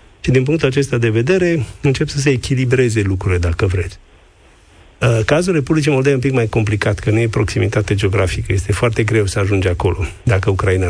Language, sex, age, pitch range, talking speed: Romanian, male, 50-69, 100-130 Hz, 185 wpm